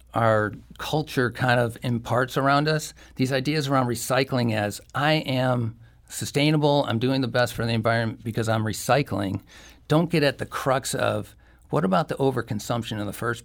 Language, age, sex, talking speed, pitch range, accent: English, 50-69, male, 170 wpm, 105-130 Hz, American